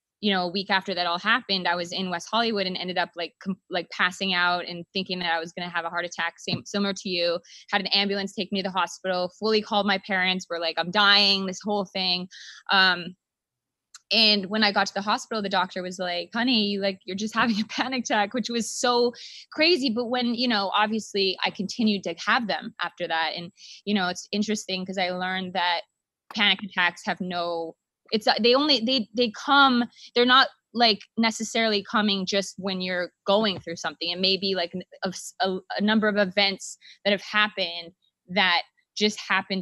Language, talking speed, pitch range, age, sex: English, 205 wpm, 180-215 Hz, 20-39, female